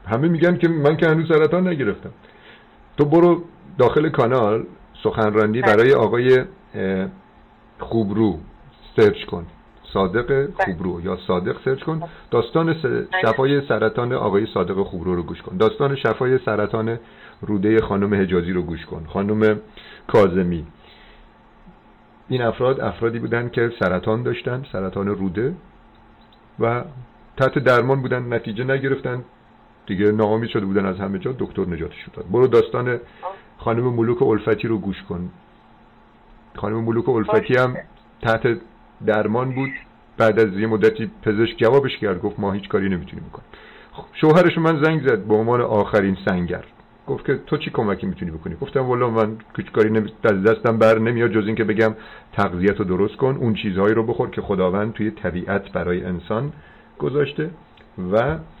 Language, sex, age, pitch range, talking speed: Persian, male, 50-69, 105-130 Hz, 145 wpm